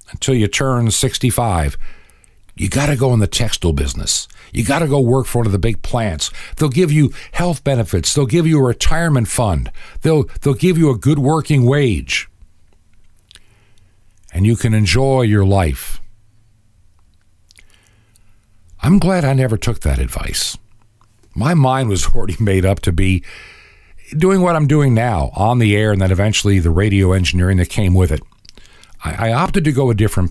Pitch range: 95-130 Hz